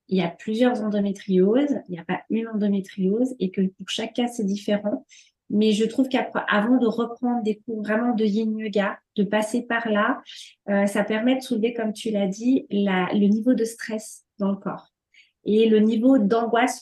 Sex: female